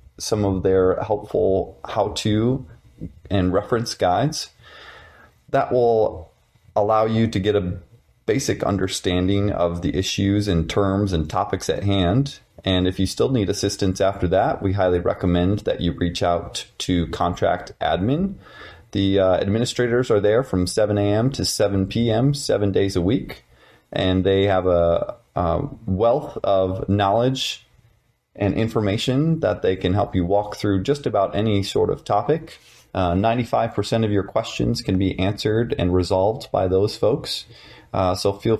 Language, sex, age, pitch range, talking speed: English, male, 30-49, 95-115 Hz, 150 wpm